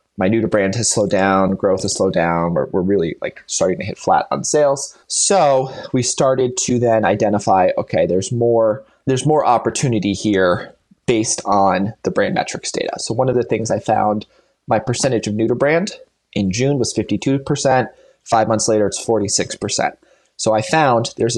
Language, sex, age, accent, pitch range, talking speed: English, male, 20-39, American, 105-135 Hz, 185 wpm